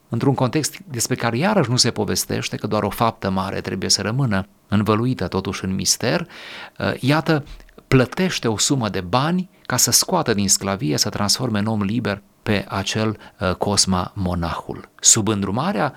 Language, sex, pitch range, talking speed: Romanian, male, 100-130 Hz, 160 wpm